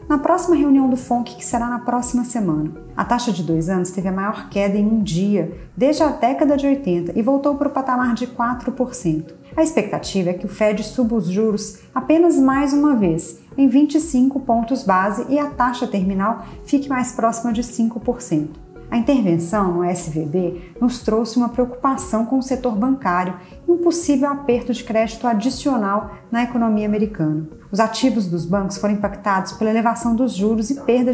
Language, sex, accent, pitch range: Portuguese, female, Brazilian, 185-255 Hz